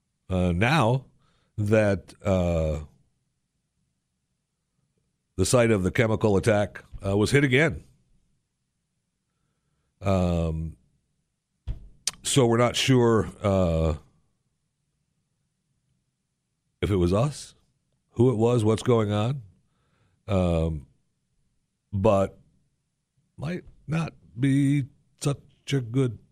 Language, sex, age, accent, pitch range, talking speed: English, male, 60-79, American, 85-135 Hz, 85 wpm